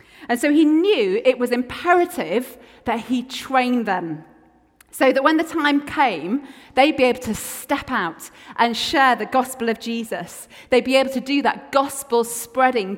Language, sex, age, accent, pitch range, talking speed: English, female, 30-49, British, 220-280 Hz, 165 wpm